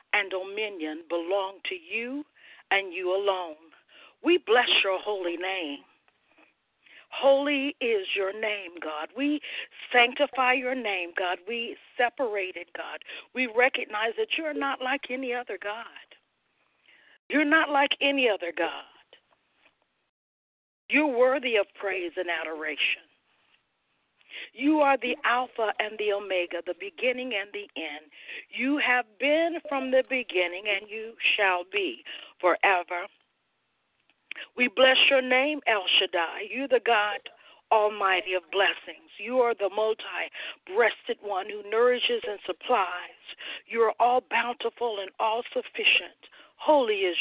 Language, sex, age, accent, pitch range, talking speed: English, female, 50-69, American, 195-275 Hz, 130 wpm